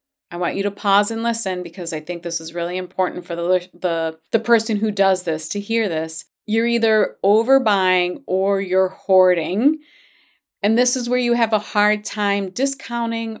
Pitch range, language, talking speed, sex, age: 180-225 Hz, English, 180 wpm, female, 30-49